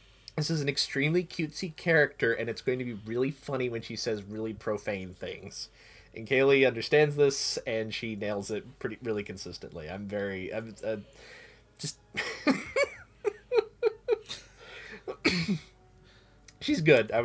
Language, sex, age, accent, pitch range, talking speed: English, male, 20-39, American, 105-155 Hz, 130 wpm